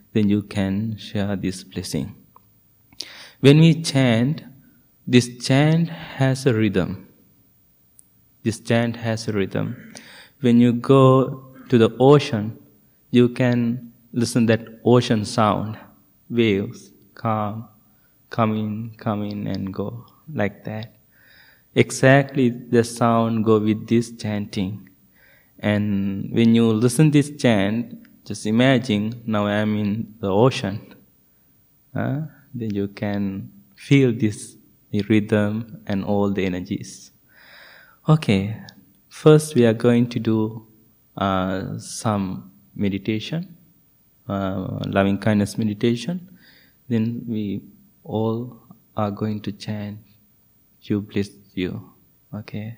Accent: Indian